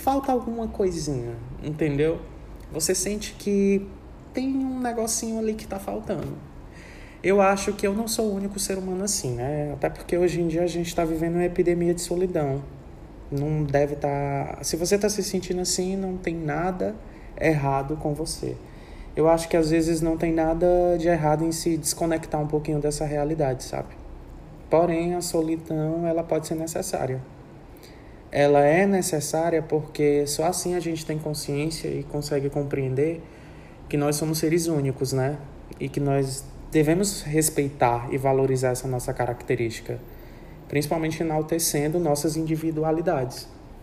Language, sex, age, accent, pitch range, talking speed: Portuguese, male, 20-39, Brazilian, 140-170 Hz, 155 wpm